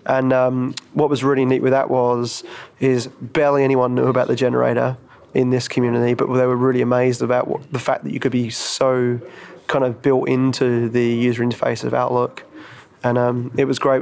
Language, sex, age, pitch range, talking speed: English, male, 20-39, 120-130 Hz, 195 wpm